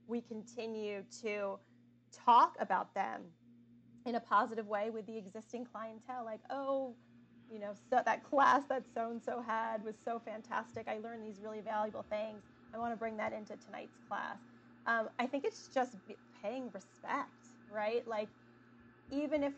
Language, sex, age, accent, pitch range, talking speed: English, female, 20-39, American, 200-240 Hz, 155 wpm